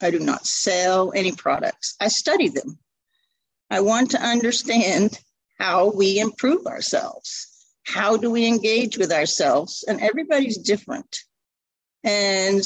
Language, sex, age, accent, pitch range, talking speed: English, female, 50-69, American, 190-230 Hz, 130 wpm